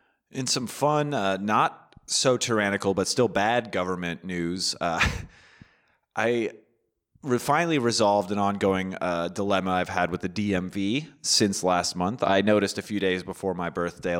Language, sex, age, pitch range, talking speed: English, male, 30-49, 90-120 Hz, 155 wpm